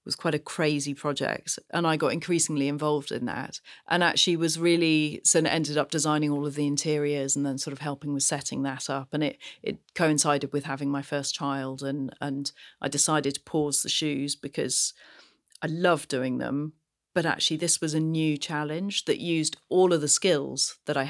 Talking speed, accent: 200 wpm, British